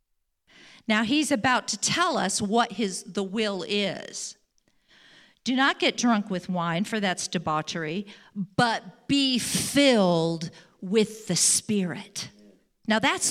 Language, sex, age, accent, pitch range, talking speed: English, female, 50-69, American, 205-285 Hz, 125 wpm